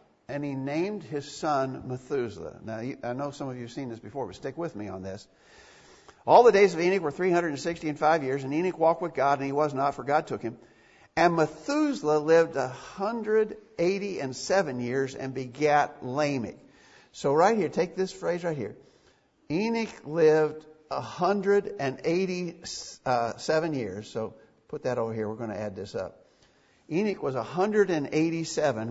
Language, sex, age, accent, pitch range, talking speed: English, male, 60-79, American, 130-165 Hz, 190 wpm